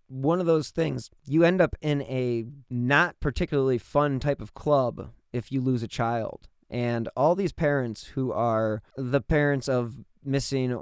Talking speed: 165 wpm